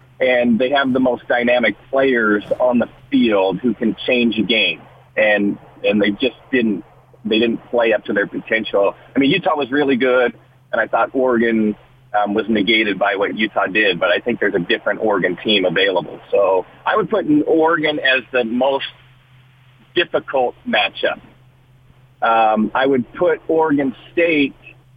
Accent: American